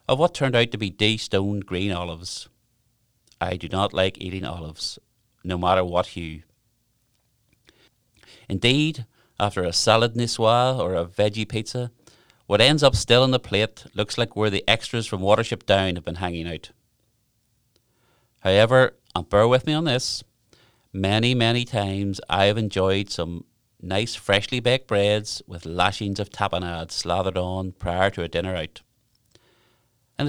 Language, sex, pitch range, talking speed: English, male, 100-120 Hz, 155 wpm